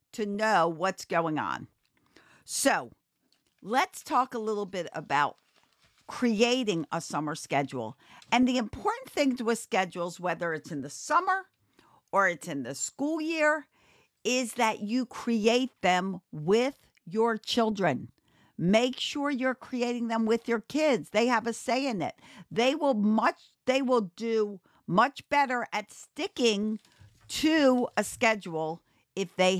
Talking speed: 140 wpm